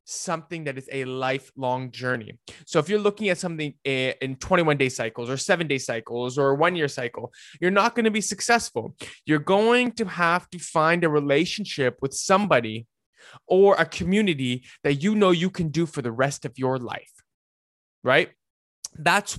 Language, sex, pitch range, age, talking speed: English, male, 135-185 Hz, 20-39, 175 wpm